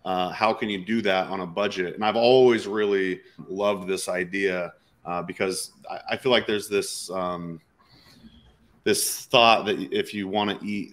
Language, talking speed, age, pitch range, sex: English, 180 wpm, 30-49, 90-110 Hz, male